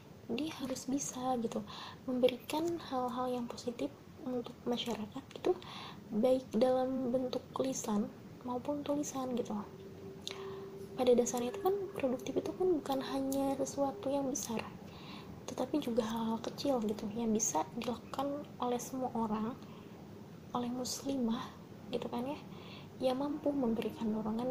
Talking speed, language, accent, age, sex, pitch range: 120 wpm, Indonesian, native, 20-39, female, 220-265 Hz